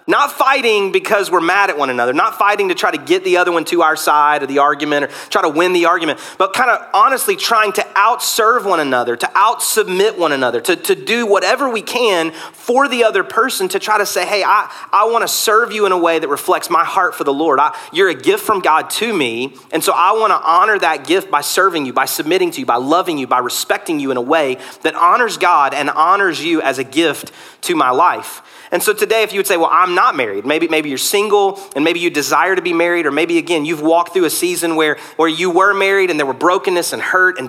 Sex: male